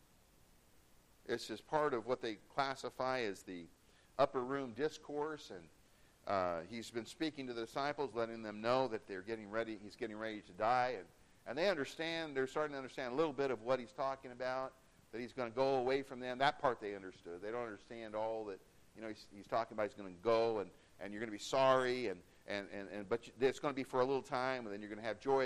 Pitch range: 105-140 Hz